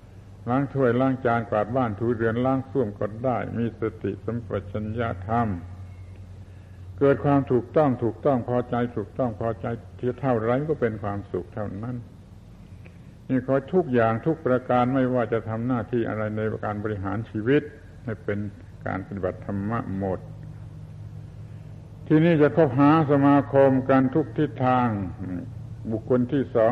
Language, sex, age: Thai, male, 70-89